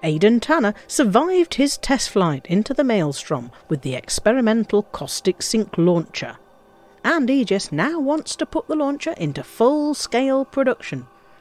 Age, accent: 50-69, British